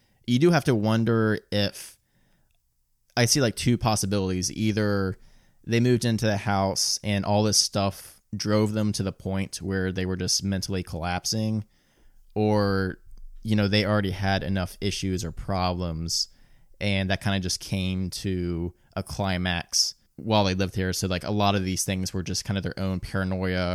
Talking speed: 175 wpm